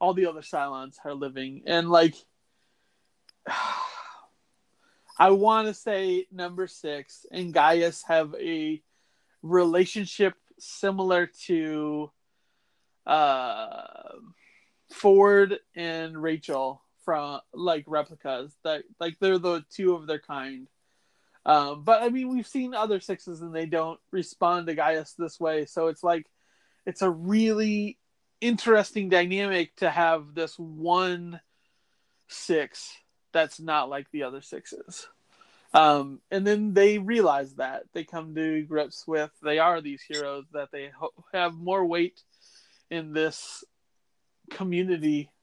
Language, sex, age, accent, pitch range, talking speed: English, male, 30-49, American, 150-190 Hz, 125 wpm